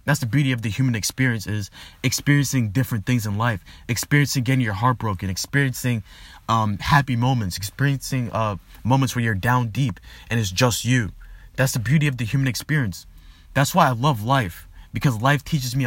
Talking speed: 185 wpm